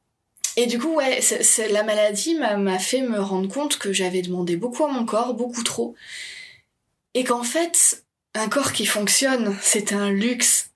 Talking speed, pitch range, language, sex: 165 wpm, 205-275 Hz, French, female